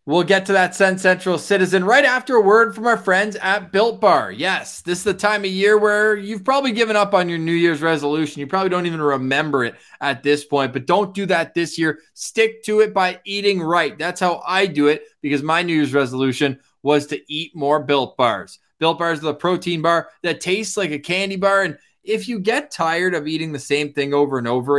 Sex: male